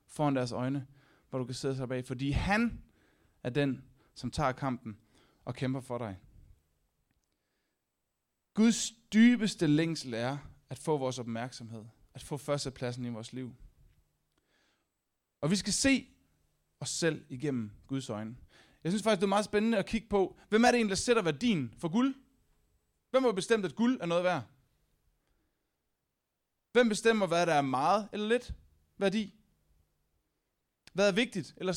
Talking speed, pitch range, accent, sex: 155 wpm, 120-195 Hz, native, male